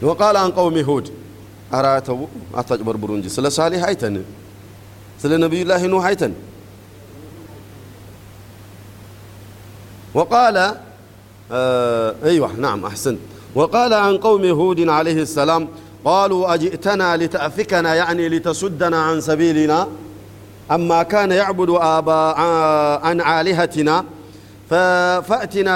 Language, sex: Amharic, male